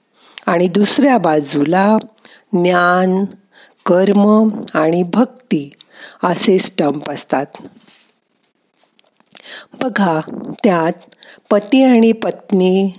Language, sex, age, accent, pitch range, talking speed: Marathi, female, 50-69, native, 165-220 Hz, 70 wpm